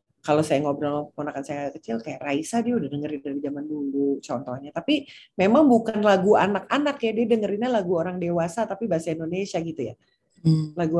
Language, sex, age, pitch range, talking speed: Indonesian, female, 30-49, 160-225 Hz, 175 wpm